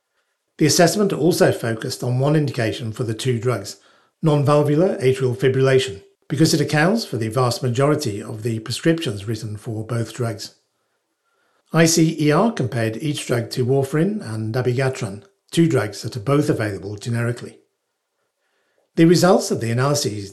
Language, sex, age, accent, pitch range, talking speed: English, male, 60-79, British, 115-145 Hz, 140 wpm